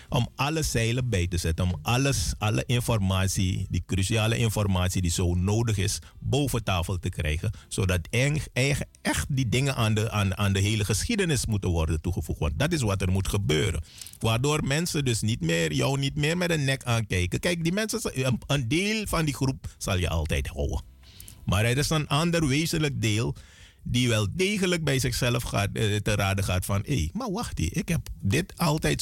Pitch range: 95-130 Hz